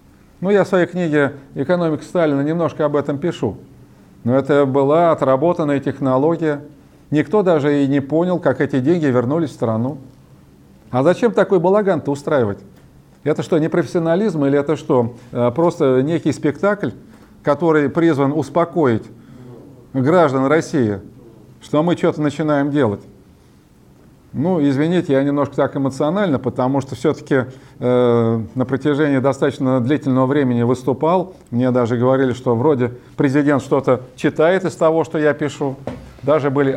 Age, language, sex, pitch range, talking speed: 40-59, Russian, male, 125-155 Hz, 135 wpm